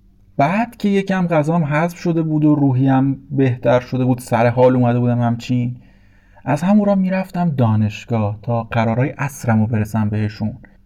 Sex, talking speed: male, 155 wpm